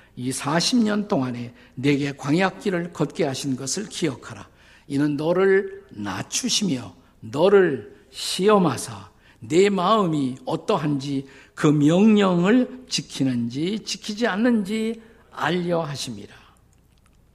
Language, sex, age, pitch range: Korean, male, 50-69, 130-180 Hz